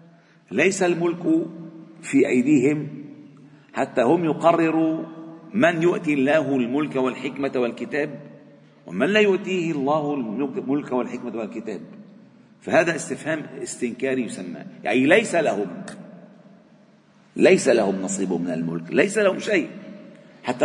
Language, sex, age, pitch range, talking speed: Arabic, male, 50-69, 135-205 Hz, 105 wpm